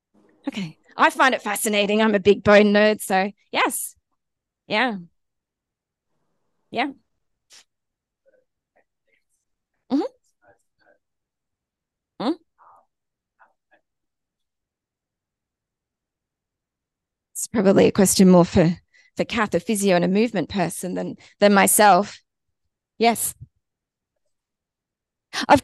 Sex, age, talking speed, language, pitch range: female, 20-39, 80 wpm, English, 180-230 Hz